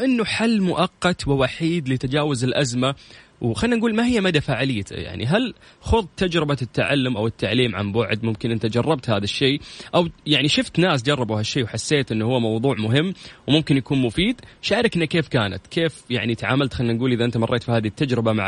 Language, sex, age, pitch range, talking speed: Arabic, male, 20-39, 125-170 Hz, 180 wpm